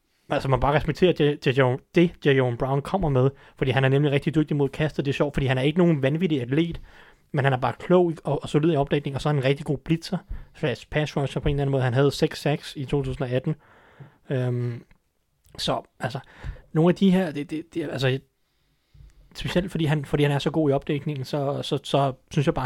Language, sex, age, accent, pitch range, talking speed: Danish, male, 30-49, native, 130-155 Hz, 220 wpm